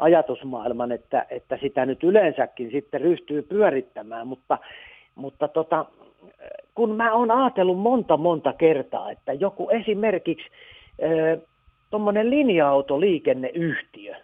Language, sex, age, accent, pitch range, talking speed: Finnish, male, 50-69, native, 140-225 Hz, 105 wpm